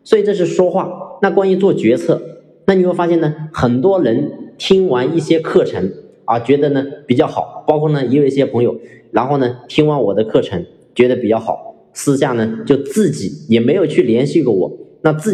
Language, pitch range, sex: Chinese, 120-175 Hz, male